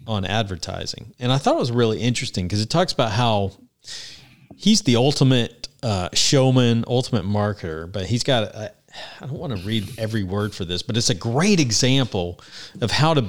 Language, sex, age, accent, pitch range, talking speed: English, male, 40-59, American, 105-130 Hz, 185 wpm